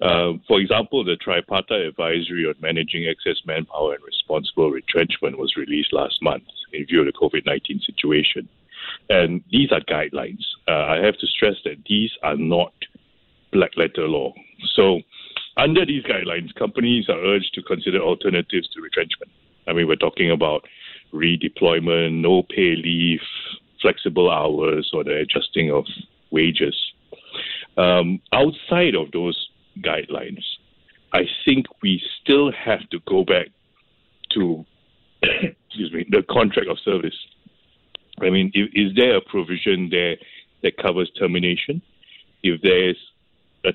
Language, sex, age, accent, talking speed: English, male, 60-79, Malaysian, 135 wpm